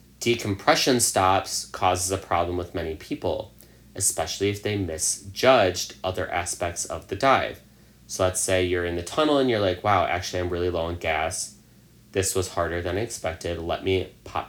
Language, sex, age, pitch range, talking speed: English, male, 30-49, 80-105 Hz, 180 wpm